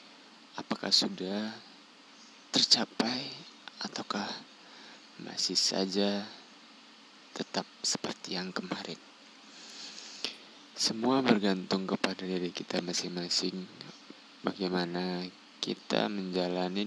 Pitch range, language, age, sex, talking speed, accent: 90-105 Hz, Indonesian, 20-39, male, 65 wpm, native